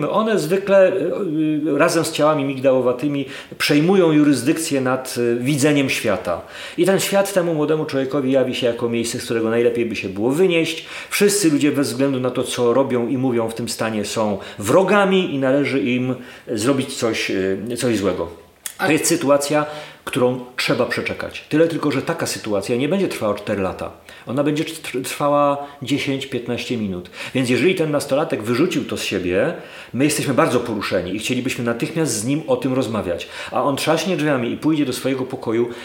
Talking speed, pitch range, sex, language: 165 wpm, 115-150 Hz, male, Polish